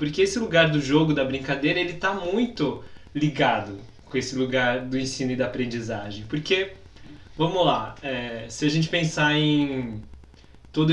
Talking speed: 160 wpm